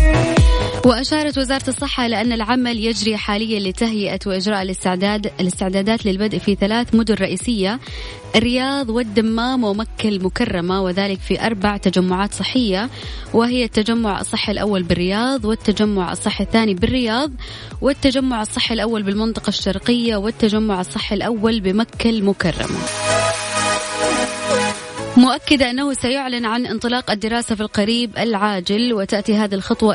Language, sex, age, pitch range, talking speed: Arabic, female, 20-39, 190-235 Hz, 110 wpm